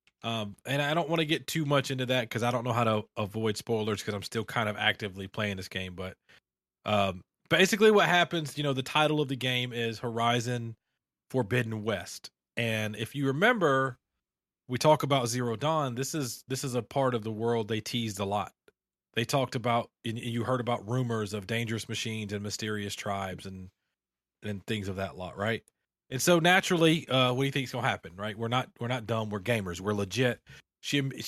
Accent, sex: American, male